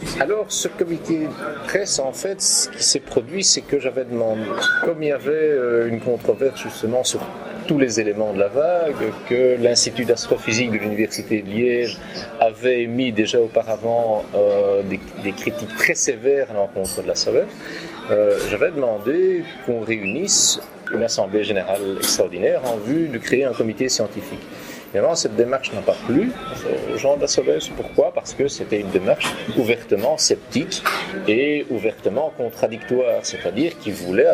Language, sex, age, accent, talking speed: French, male, 40-59, French, 160 wpm